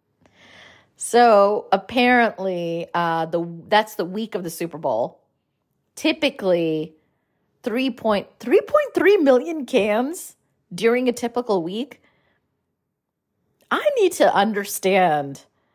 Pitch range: 165-245 Hz